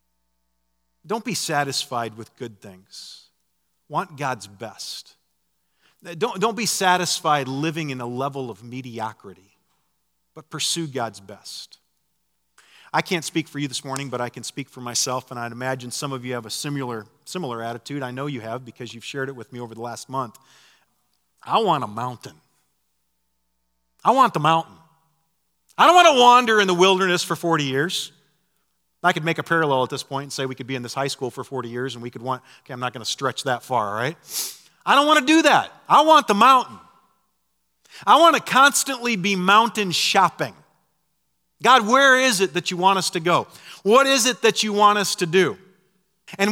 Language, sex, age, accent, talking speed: English, male, 40-59, American, 195 wpm